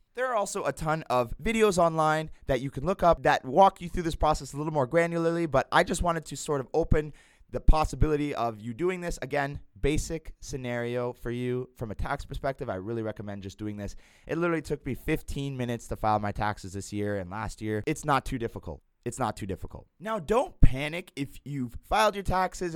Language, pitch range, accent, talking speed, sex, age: English, 110-155 Hz, American, 220 wpm, male, 20-39